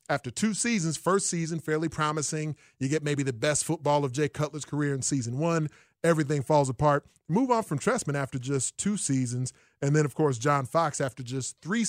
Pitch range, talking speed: 135-155 Hz, 200 wpm